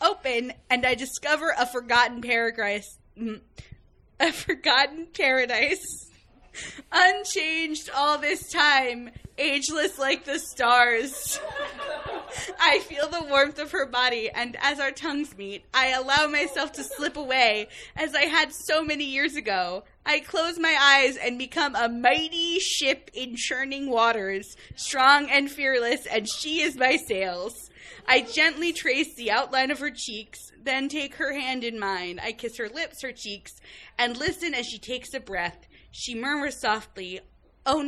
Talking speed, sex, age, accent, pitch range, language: 150 wpm, female, 20-39, American, 245-300 Hz, English